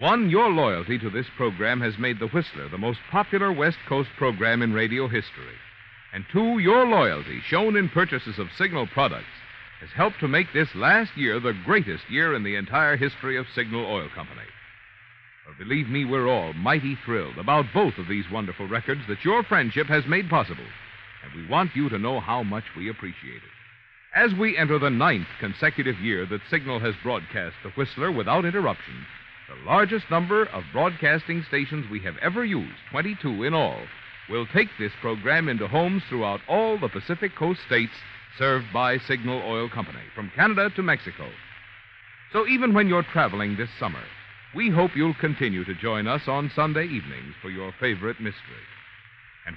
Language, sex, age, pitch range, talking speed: English, male, 60-79, 110-165 Hz, 180 wpm